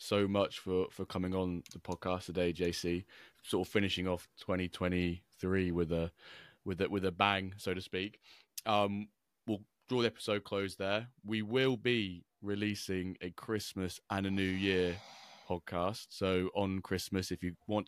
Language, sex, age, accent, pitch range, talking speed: English, male, 20-39, British, 90-105 Hz, 165 wpm